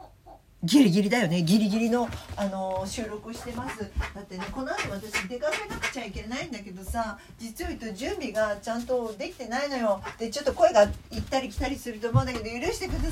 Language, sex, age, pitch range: Japanese, female, 50-69, 160-260 Hz